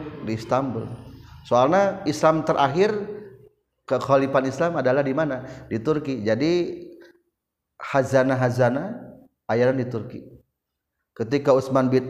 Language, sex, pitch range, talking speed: Indonesian, male, 120-160 Hz, 100 wpm